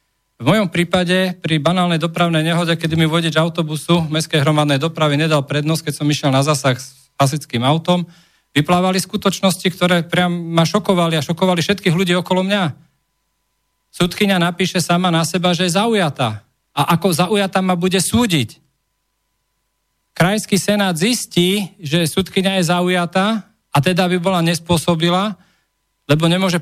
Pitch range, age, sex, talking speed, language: 155-185 Hz, 40-59, male, 145 wpm, Slovak